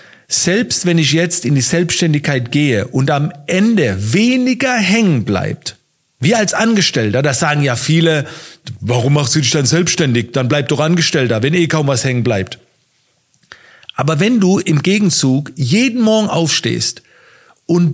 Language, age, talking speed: German, 50-69, 155 wpm